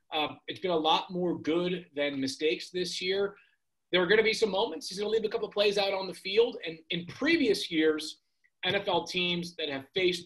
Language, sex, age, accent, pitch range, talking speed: English, male, 30-49, American, 130-170 Hz, 230 wpm